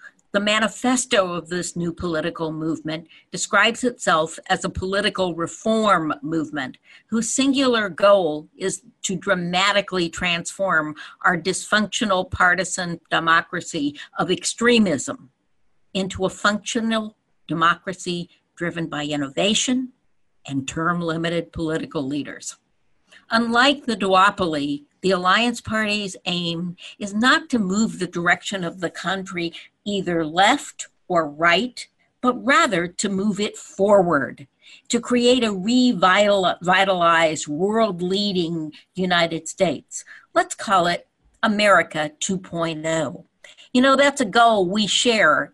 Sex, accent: female, American